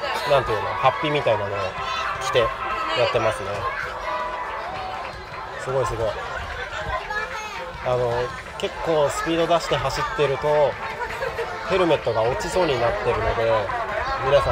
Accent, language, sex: native, Japanese, male